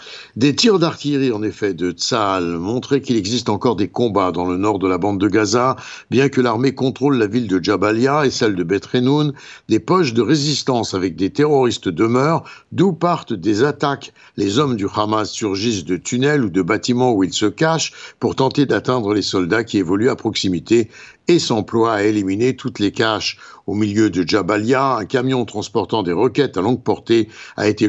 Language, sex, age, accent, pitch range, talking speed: French, male, 60-79, French, 105-145 Hz, 190 wpm